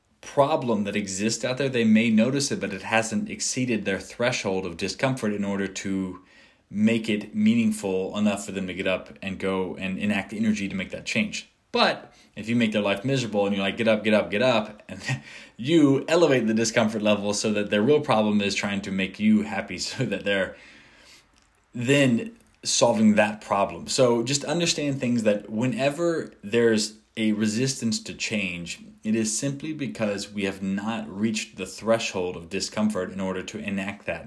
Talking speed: 185 wpm